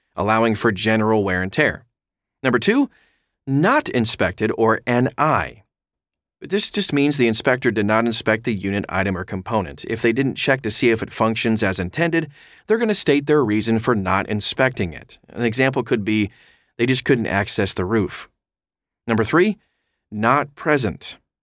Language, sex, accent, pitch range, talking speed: English, male, American, 105-140 Hz, 170 wpm